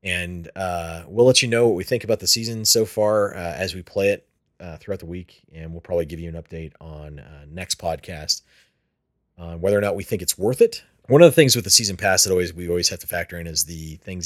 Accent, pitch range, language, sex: American, 85-95 Hz, English, male